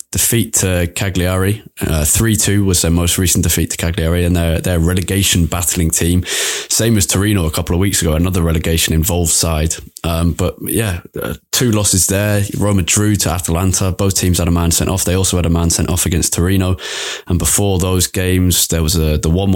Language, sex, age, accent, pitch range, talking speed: English, male, 20-39, British, 85-100 Hz, 200 wpm